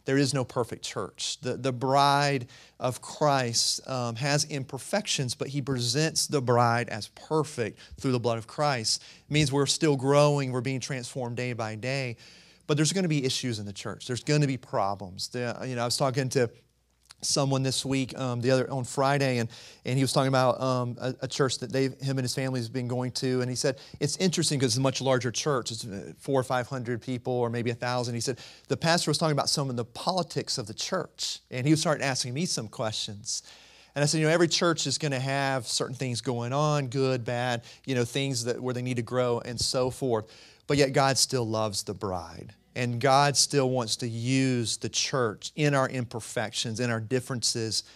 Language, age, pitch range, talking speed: English, 40-59, 120-145 Hz, 220 wpm